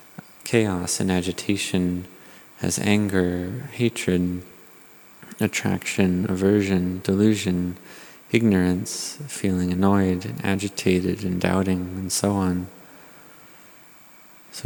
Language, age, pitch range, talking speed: English, 30-49, 90-100 Hz, 80 wpm